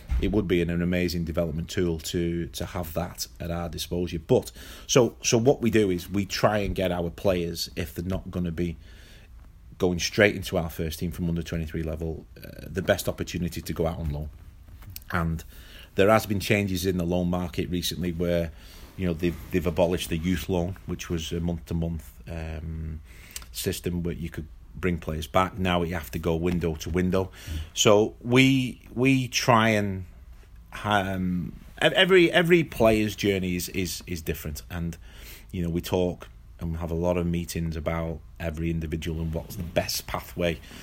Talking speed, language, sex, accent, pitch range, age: 185 wpm, English, male, British, 85-95 Hz, 30-49